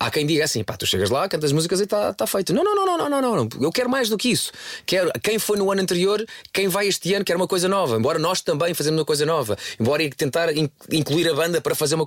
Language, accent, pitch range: Portuguese, Portuguese, 135-195 Hz